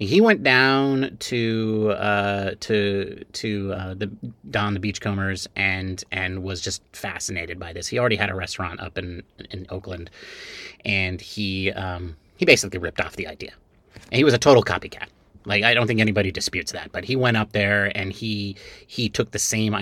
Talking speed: 185 wpm